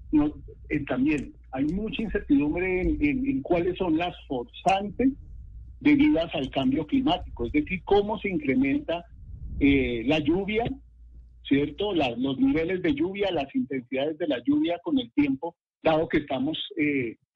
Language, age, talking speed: Spanish, 50-69, 145 wpm